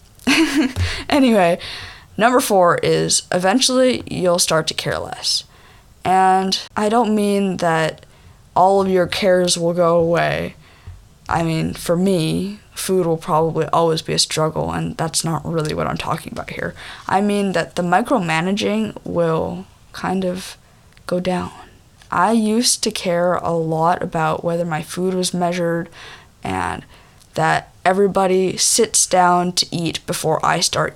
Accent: American